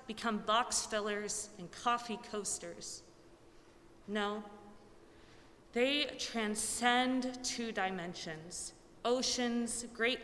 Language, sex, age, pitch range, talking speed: English, female, 30-49, 195-250 Hz, 75 wpm